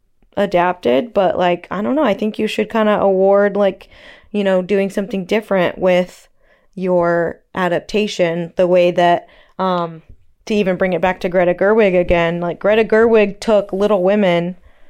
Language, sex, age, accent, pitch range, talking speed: English, female, 20-39, American, 170-205 Hz, 165 wpm